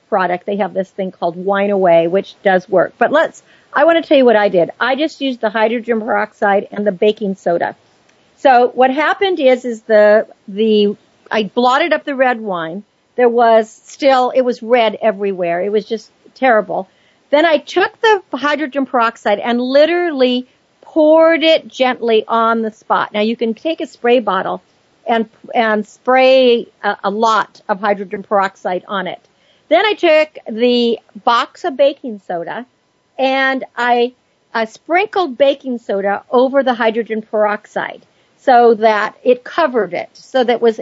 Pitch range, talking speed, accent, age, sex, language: 210-265 Hz, 165 wpm, American, 50-69, female, English